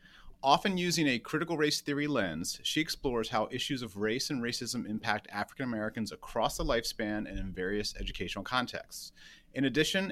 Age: 30-49